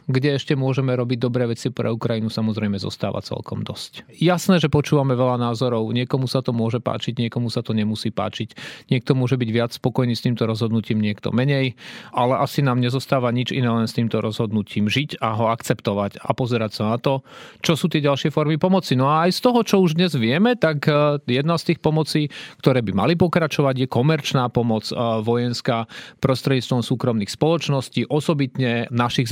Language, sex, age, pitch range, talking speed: Slovak, male, 40-59, 120-150 Hz, 180 wpm